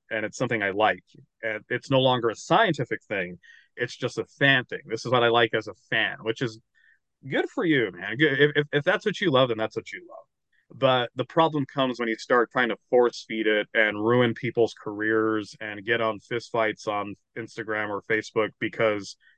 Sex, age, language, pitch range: male, 30-49, English, 110-130 Hz